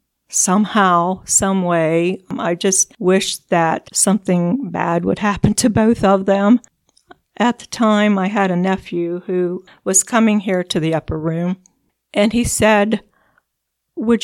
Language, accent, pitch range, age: English, American, 180-235 Hz, 50-69